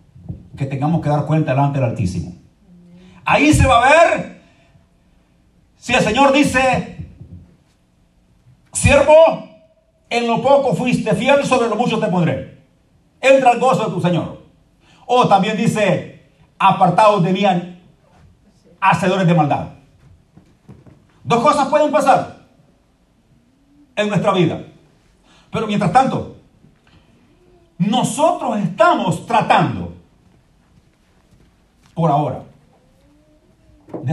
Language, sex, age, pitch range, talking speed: Spanish, male, 50-69, 155-235 Hz, 100 wpm